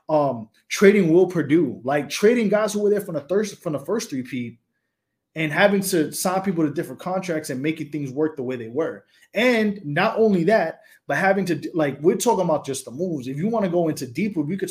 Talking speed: 235 wpm